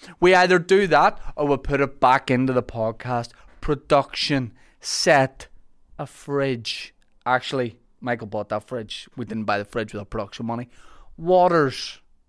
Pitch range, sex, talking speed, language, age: 115-150 Hz, male, 145 wpm, English, 20-39